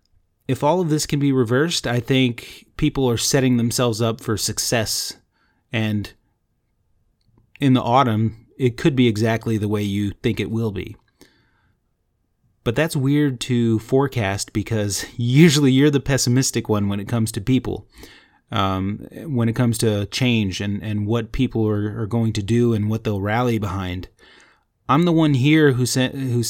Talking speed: 165 wpm